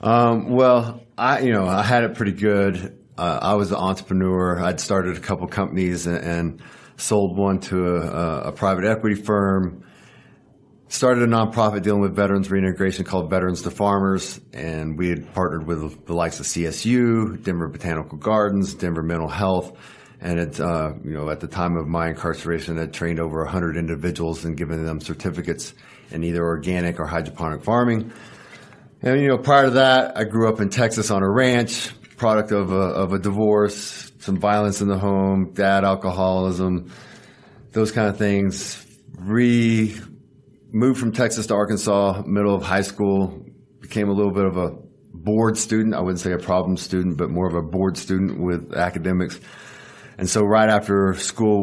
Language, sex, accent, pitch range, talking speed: English, male, American, 90-105 Hz, 175 wpm